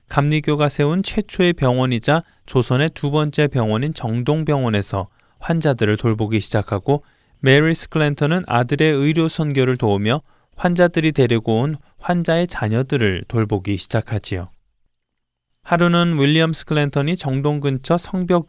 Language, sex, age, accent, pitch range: Korean, male, 20-39, native, 110-150 Hz